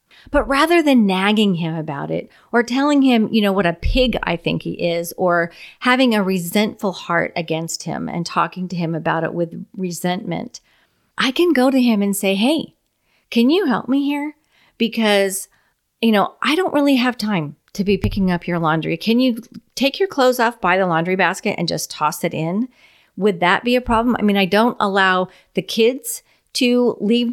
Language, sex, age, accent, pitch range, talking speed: English, female, 40-59, American, 180-240 Hz, 200 wpm